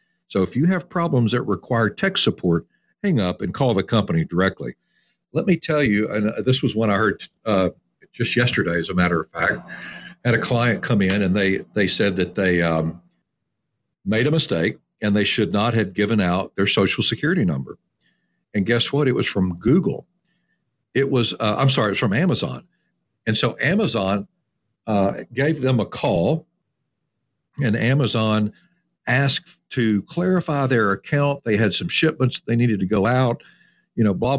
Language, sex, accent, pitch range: English, male, American, 105-140 Hz